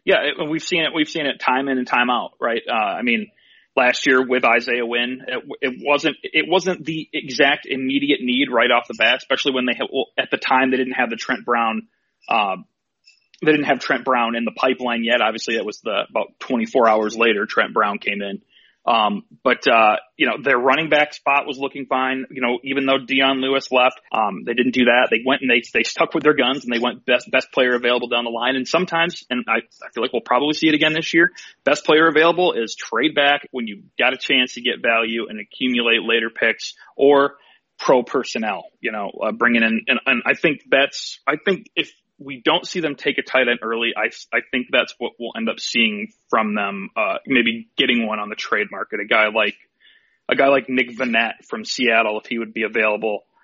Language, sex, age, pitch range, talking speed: English, male, 30-49, 115-145 Hz, 230 wpm